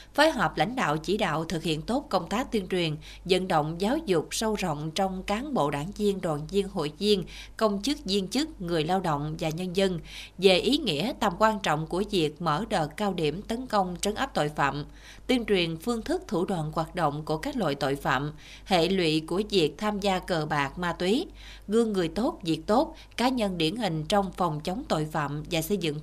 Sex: female